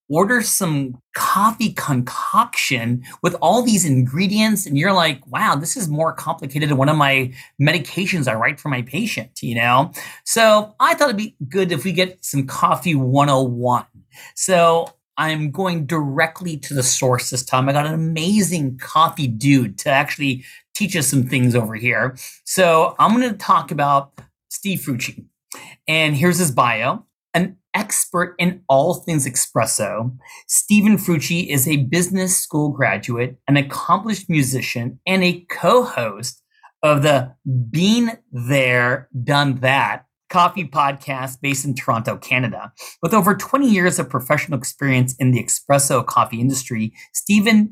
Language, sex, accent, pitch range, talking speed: English, male, American, 135-180 Hz, 155 wpm